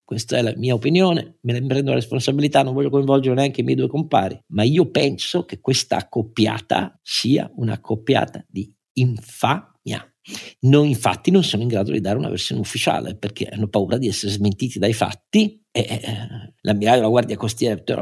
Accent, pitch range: native, 110-140 Hz